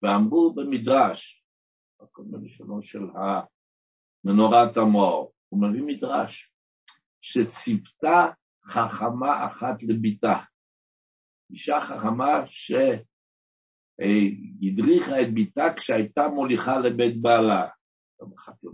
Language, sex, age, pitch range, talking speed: Hebrew, male, 60-79, 100-145 Hz, 75 wpm